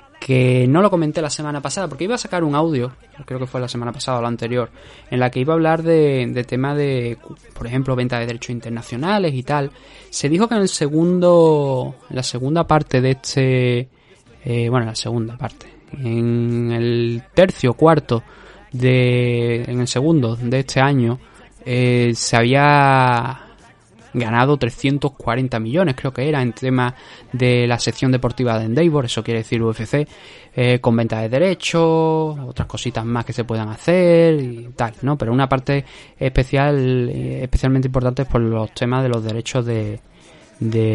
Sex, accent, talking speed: male, Spanish, 175 wpm